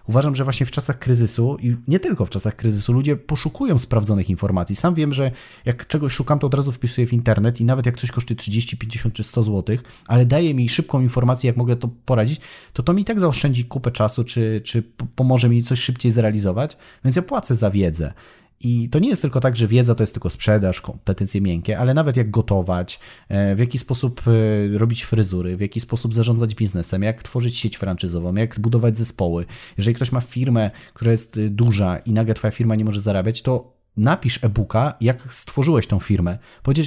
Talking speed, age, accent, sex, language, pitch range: 200 wpm, 30-49, native, male, Polish, 110-130 Hz